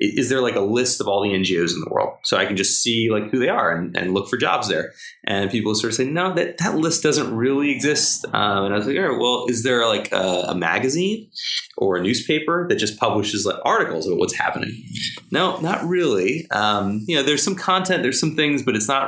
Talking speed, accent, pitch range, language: 250 wpm, American, 100-130 Hz, English